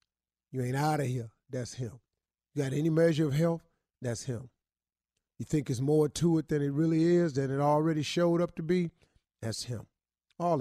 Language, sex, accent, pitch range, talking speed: English, male, American, 115-170 Hz, 200 wpm